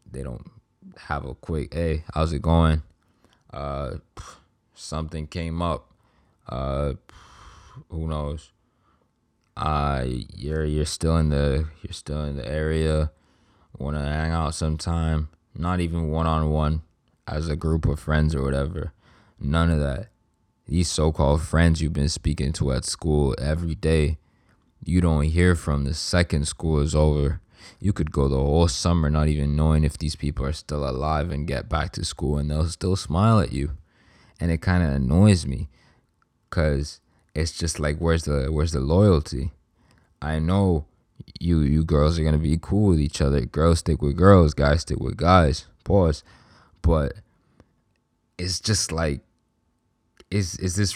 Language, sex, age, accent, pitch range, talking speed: English, male, 20-39, American, 75-90 Hz, 165 wpm